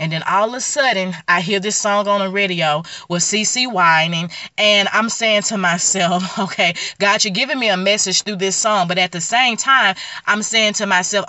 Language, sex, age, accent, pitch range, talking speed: English, female, 30-49, American, 175-210 Hz, 215 wpm